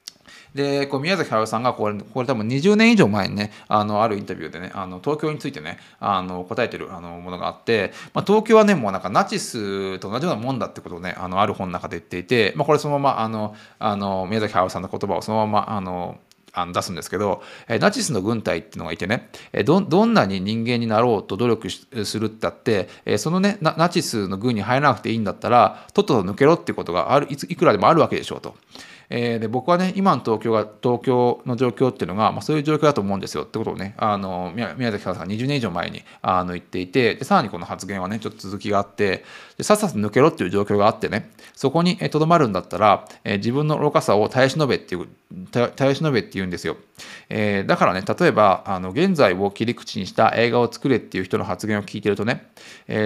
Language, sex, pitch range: Japanese, male, 105-150 Hz